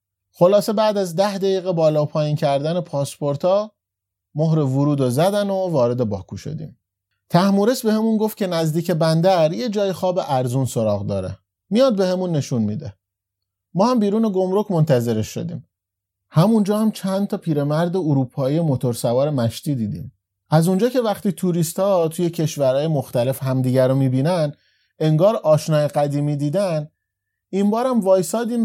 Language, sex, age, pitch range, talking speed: Persian, male, 30-49, 130-195 Hz, 140 wpm